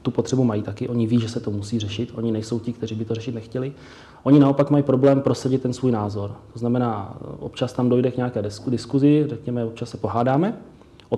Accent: native